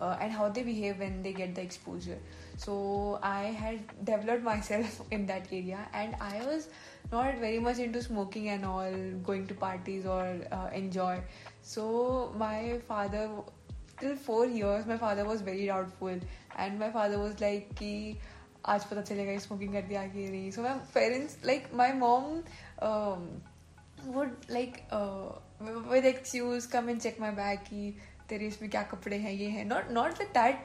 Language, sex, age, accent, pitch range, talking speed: Hindi, female, 10-29, native, 200-235 Hz, 170 wpm